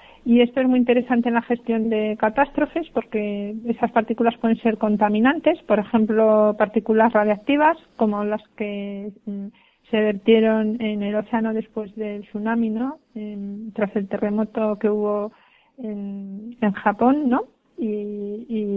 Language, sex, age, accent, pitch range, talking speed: Spanish, female, 40-59, Spanish, 210-235 Hz, 145 wpm